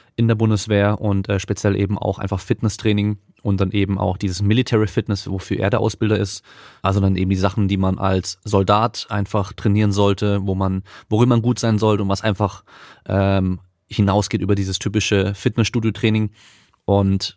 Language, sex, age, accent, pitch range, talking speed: German, male, 30-49, German, 100-110 Hz, 175 wpm